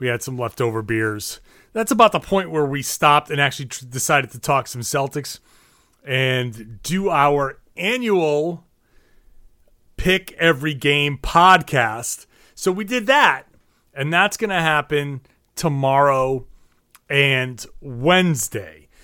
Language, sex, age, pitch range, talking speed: English, male, 30-49, 130-185 Hz, 125 wpm